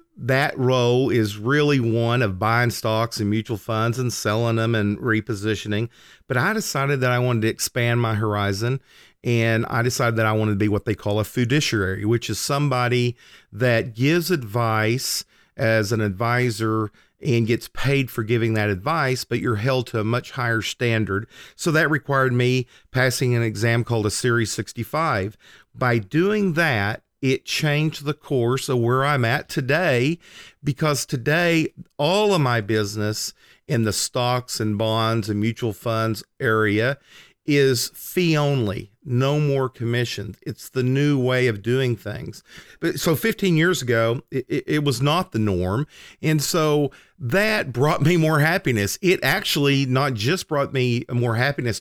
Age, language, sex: 40-59, English, male